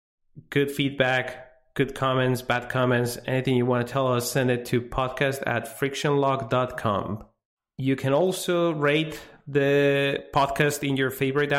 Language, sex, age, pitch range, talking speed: English, male, 30-49, 120-140 Hz, 140 wpm